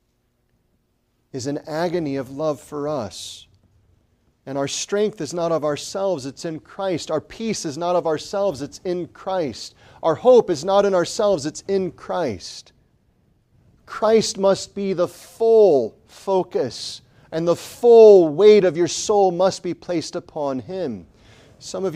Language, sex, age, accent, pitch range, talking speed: English, male, 40-59, American, 155-220 Hz, 150 wpm